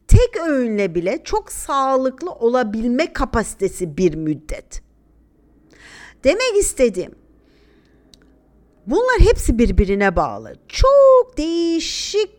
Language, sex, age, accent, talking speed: Turkish, female, 50-69, native, 80 wpm